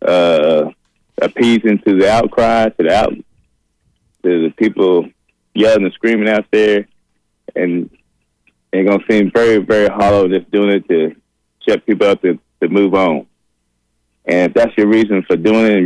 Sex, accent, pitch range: male, American, 90-105 Hz